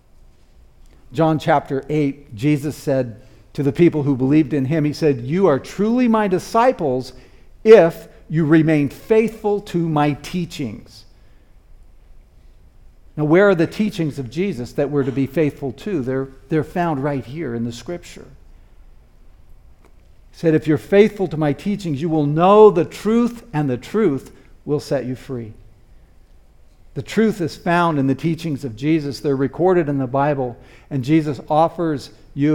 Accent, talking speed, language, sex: American, 155 wpm, English, male